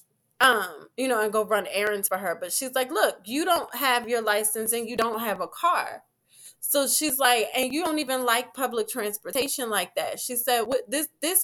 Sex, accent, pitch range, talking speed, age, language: female, American, 225-285 Hz, 215 wpm, 20-39, English